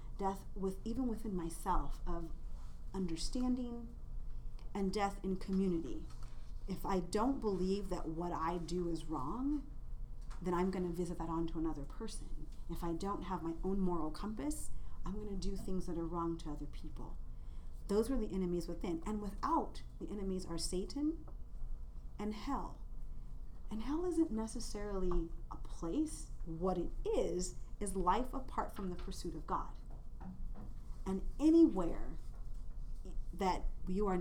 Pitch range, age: 170-215 Hz, 40-59